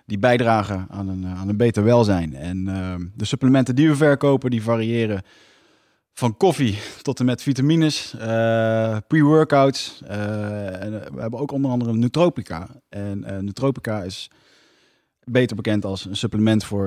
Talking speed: 155 wpm